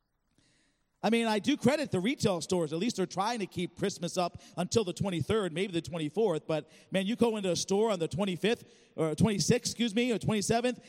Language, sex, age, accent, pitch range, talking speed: English, male, 40-59, American, 170-240 Hz, 210 wpm